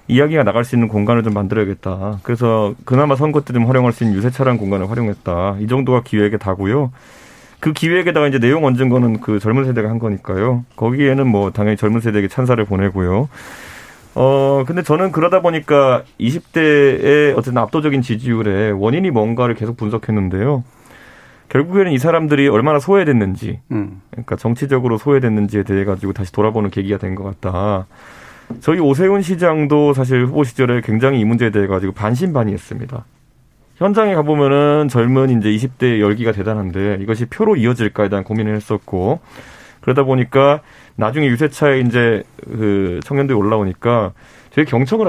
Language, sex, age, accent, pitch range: Korean, male, 30-49, native, 105-135 Hz